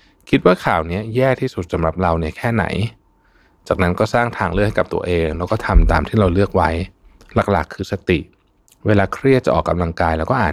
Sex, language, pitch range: male, Thai, 85-105 Hz